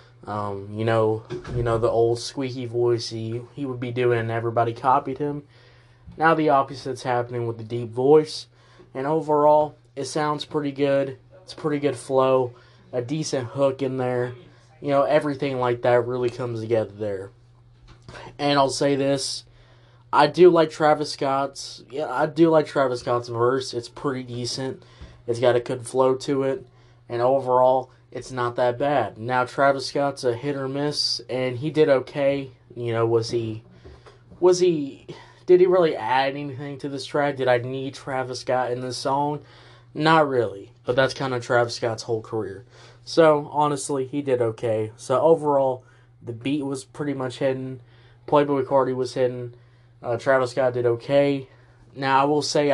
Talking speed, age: 170 wpm, 20-39